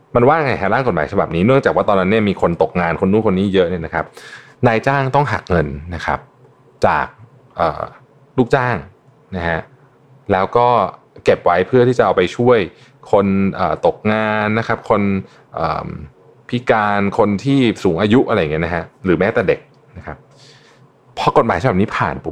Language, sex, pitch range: Thai, male, 95-135 Hz